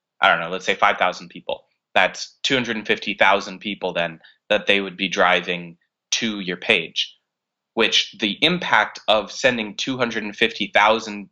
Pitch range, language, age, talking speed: 90-105 Hz, English, 20-39, 135 wpm